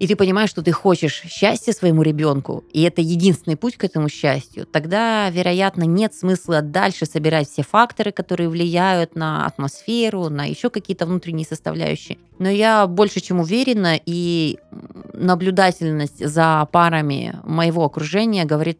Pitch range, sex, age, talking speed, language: 150-185 Hz, female, 20-39, 145 wpm, Russian